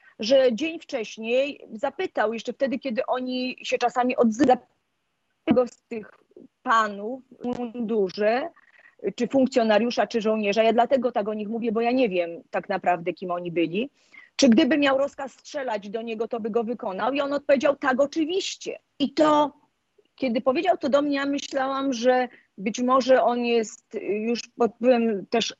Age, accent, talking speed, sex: 30-49, native, 160 wpm, female